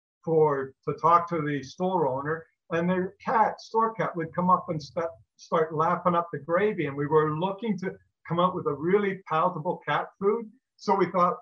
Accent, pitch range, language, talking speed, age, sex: American, 155-180 Hz, English, 200 wpm, 50-69, male